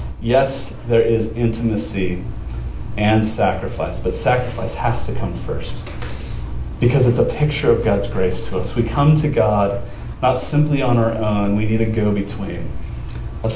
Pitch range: 100-120 Hz